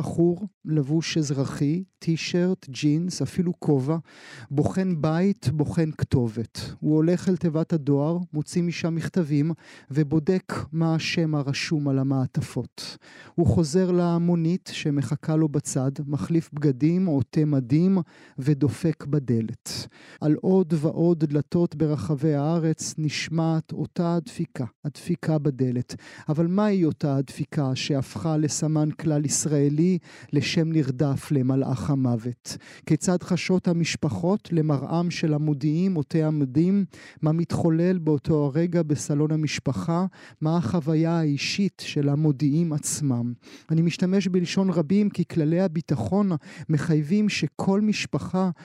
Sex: male